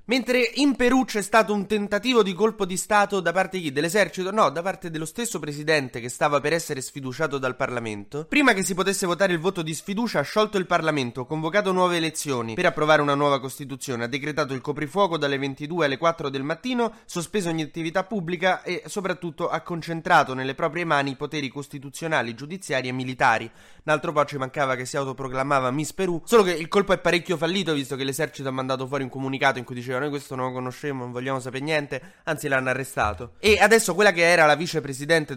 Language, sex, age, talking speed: Italian, male, 20-39, 205 wpm